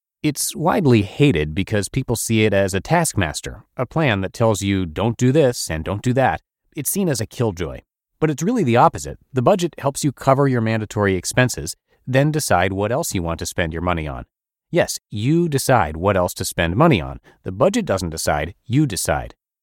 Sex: male